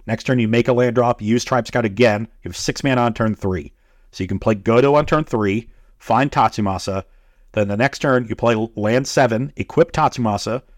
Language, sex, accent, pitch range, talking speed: English, male, American, 105-125 Hz, 210 wpm